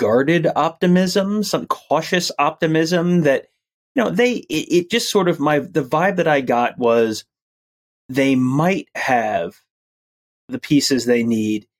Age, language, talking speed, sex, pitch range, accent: 30-49, English, 140 wpm, male, 110-145 Hz, American